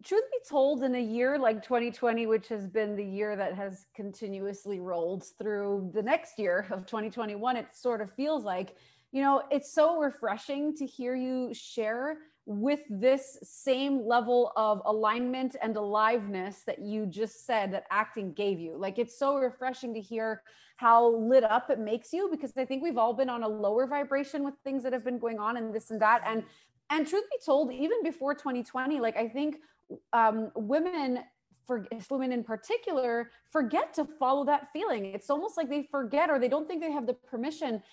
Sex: female